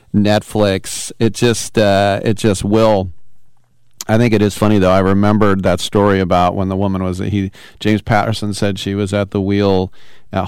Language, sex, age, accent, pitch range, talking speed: English, male, 40-59, American, 100-120 Hz, 185 wpm